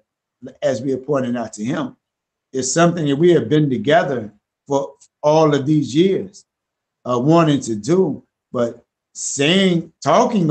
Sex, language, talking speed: male, English, 150 wpm